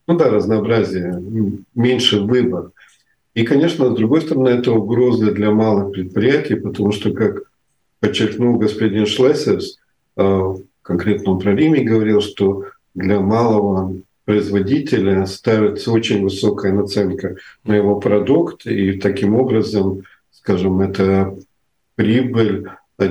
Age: 50-69